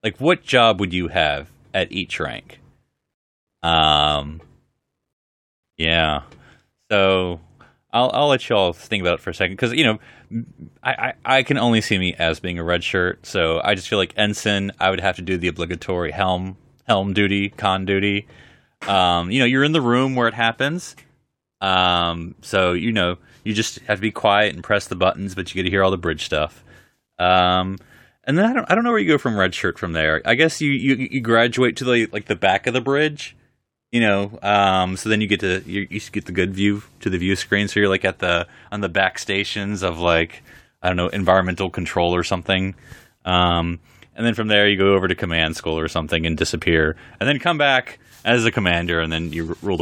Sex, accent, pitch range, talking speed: male, American, 90-115 Hz, 215 wpm